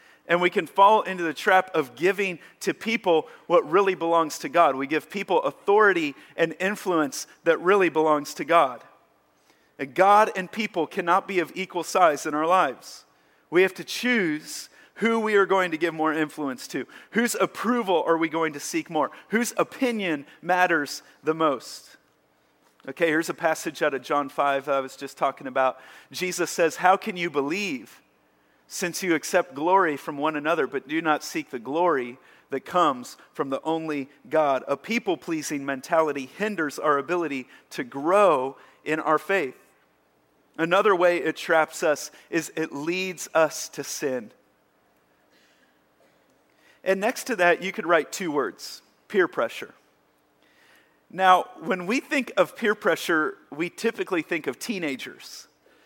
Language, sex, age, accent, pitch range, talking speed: English, male, 40-59, American, 155-195 Hz, 160 wpm